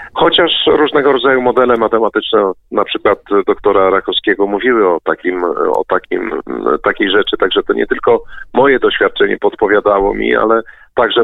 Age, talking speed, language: 40-59, 140 wpm, Polish